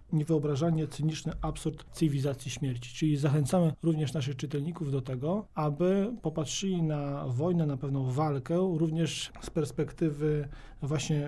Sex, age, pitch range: male, 40-59, 135-165 Hz